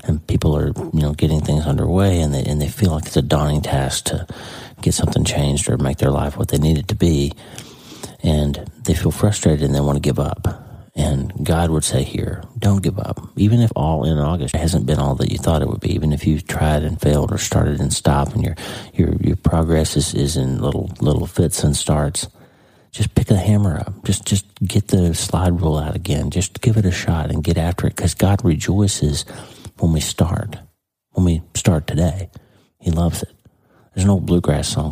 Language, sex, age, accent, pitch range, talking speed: English, male, 40-59, American, 75-100 Hz, 220 wpm